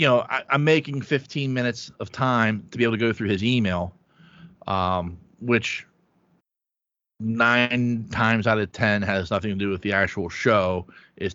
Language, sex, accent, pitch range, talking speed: English, male, American, 105-135 Hz, 175 wpm